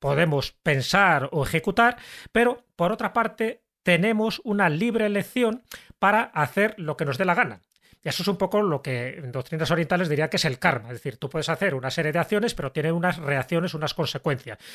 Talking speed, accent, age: 205 wpm, Spanish, 30-49